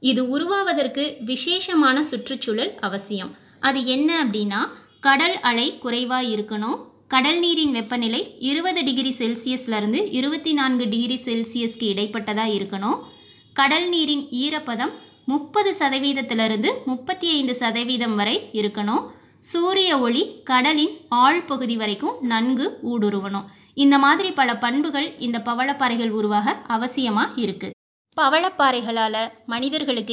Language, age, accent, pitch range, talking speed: Tamil, 20-39, native, 220-280 Hz, 100 wpm